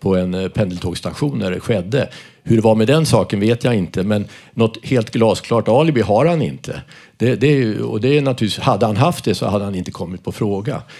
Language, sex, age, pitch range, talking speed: Swedish, male, 50-69, 100-125 Hz, 225 wpm